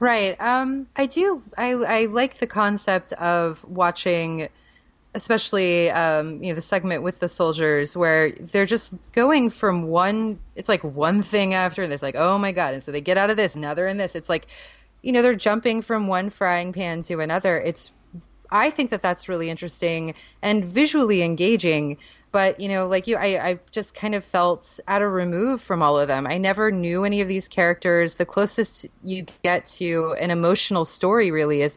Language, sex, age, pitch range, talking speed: English, female, 20-39, 165-205 Hz, 195 wpm